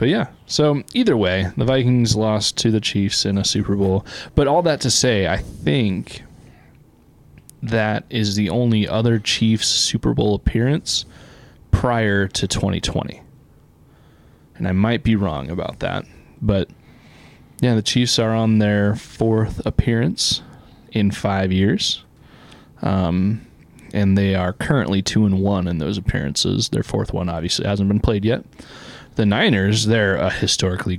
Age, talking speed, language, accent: 20-39, 150 wpm, English, American